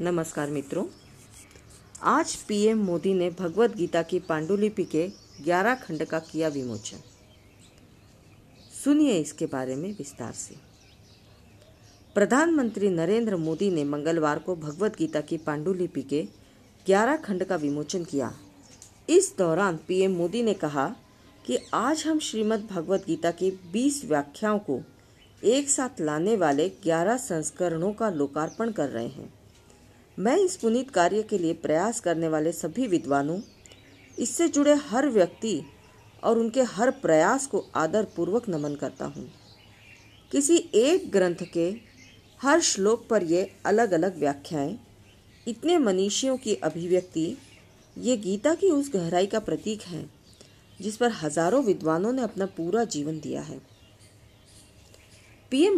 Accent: native